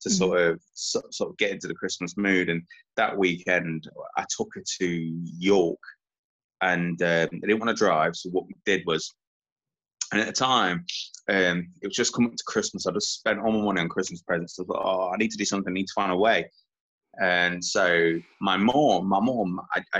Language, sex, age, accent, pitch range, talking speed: English, male, 20-39, British, 90-110 Hz, 220 wpm